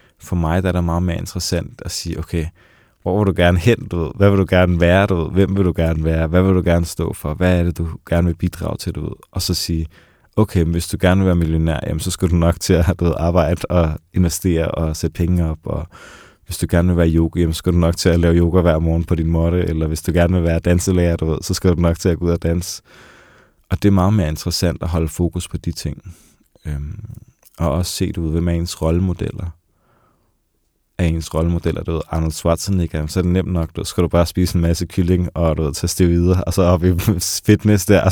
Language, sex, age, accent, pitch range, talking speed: Danish, male, 20-39, native, 85-95 Hz, 250 wpm